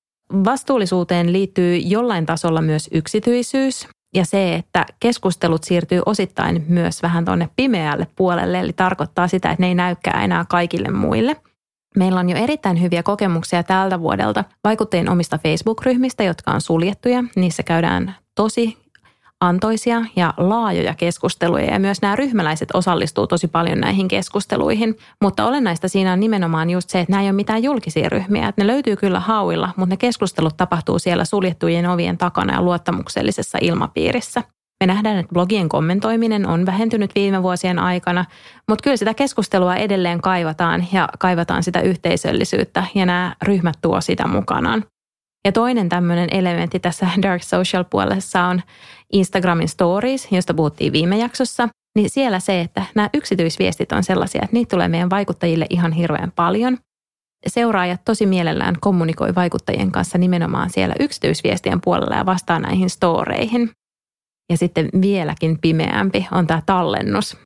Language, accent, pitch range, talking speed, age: Finnish, native, 175-210 Hz, 145 wpm, 30-49